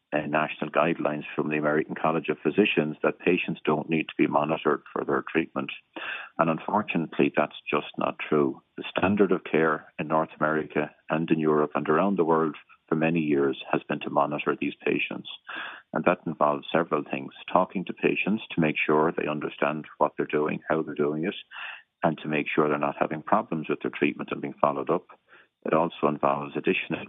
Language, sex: English, male